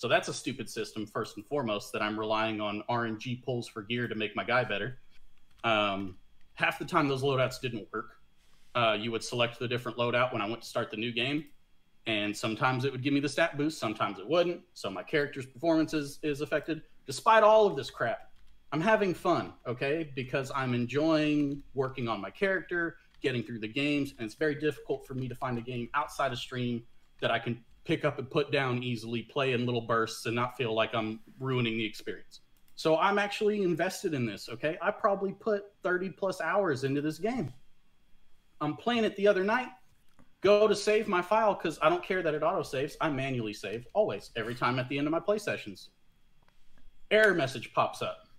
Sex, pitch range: male, 120-165 Hz